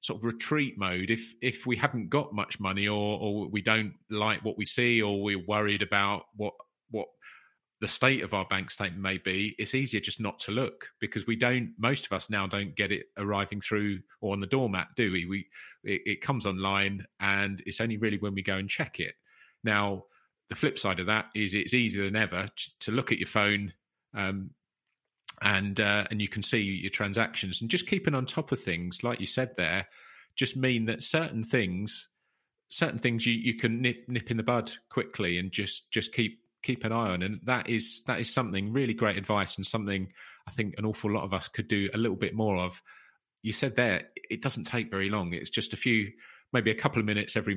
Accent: British